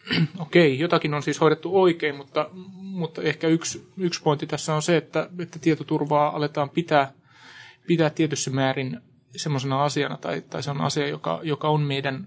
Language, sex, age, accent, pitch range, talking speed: Finnish, male, 30-49, native, 135-155 Hz, 170 wpm